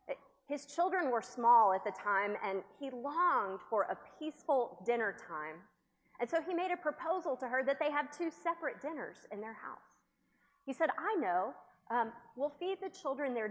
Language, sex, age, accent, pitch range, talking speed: English, female, 30-49, American, 205-300 Hz, 185 wpm